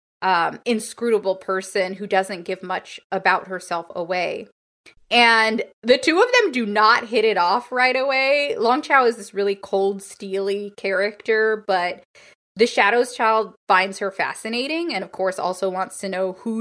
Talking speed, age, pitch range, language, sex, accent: 165 wpm, 20-39, 185-245 Hz, English, female, American